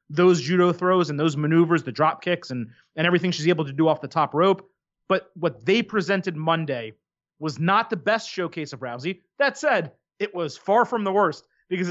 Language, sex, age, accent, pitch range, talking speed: English, male, 30-49, American, 155-205 Hz, 205 wpm